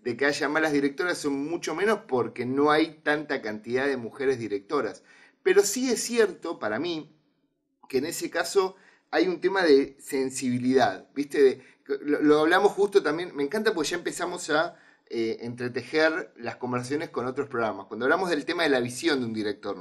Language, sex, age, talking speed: Spanish, male, 30-49, 180 wpm